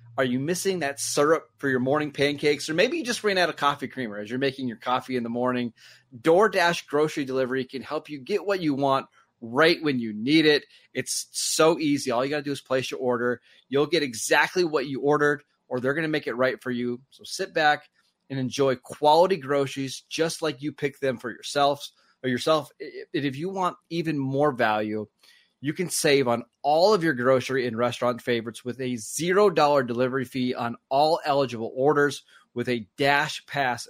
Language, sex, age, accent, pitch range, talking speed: English, male, 30-49, American, 125-155 Hz, 200 wpm